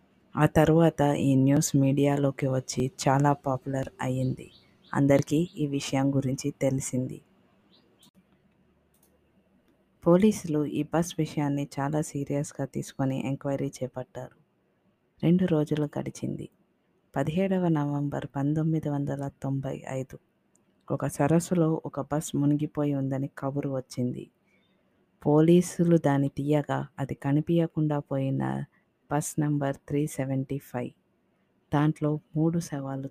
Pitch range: 135-155 Hz